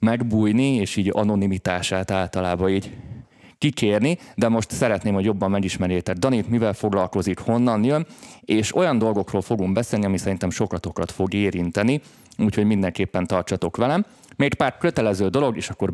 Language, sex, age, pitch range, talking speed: Hungarian, male, 30-49, 95-115 Hz, 145 wpm